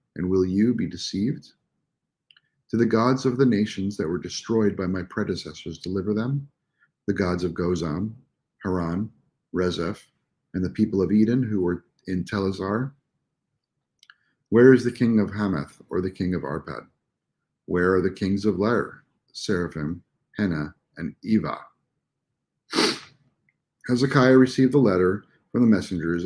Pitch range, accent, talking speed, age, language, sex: 90-110 Hz, American, 140 wpm, 50-69, English, male